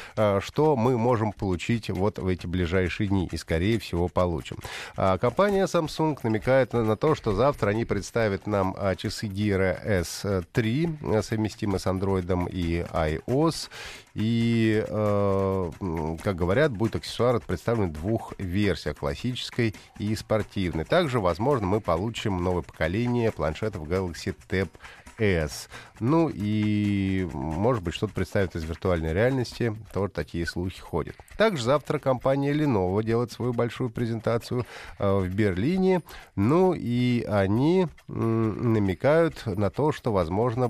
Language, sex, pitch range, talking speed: Russian, male, 90-120 Hz, 125 wpm